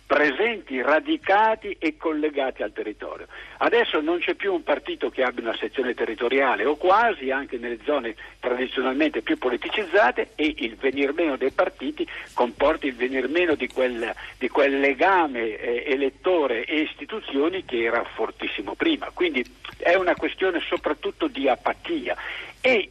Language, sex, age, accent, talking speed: Italian, male, 60-79, native, 145 wpm